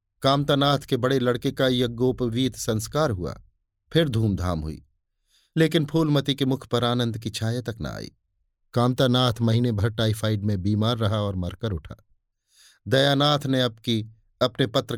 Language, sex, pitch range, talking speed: Hindi, male, 100-135 Hz, 150 wpm